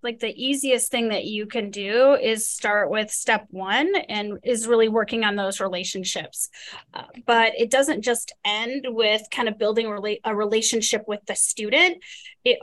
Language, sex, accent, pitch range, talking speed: English, female, American, 210-255 Hz, 165 wpm